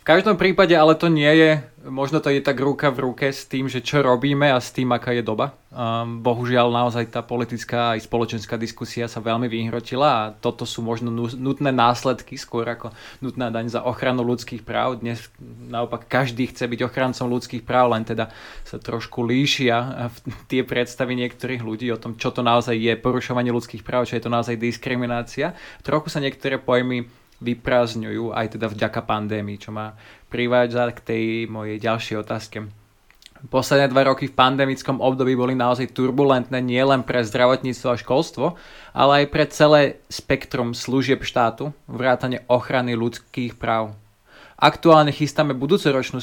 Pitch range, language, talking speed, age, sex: 115-135 Hz, Slovak, 160 wpm, 20-39, male